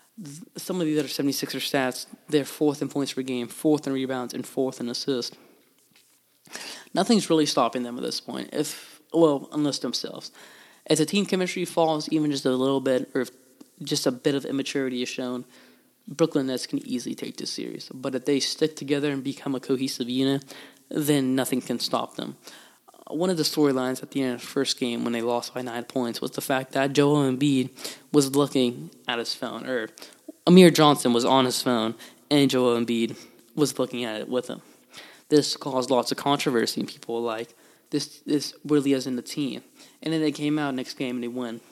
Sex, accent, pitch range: male, American, 125-150 Hz